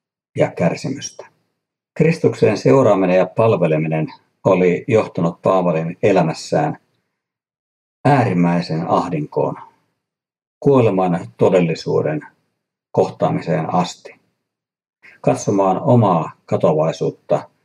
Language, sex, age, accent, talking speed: Finnish, male, 50-69, native, 65 wpm